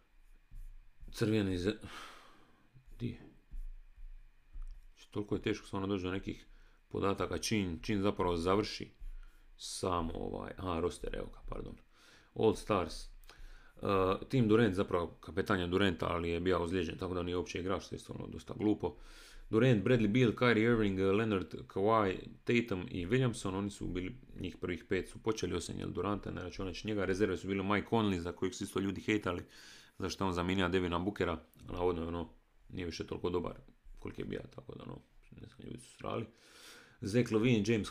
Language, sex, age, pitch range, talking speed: Croatian, male, 40-59, 90-110 Hz, 160 wpm